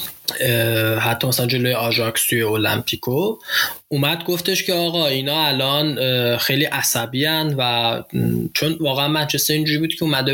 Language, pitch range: Persian, 125-160 Hz